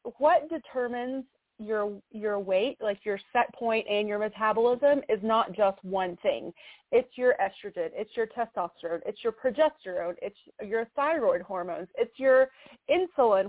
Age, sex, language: 30-49, female, English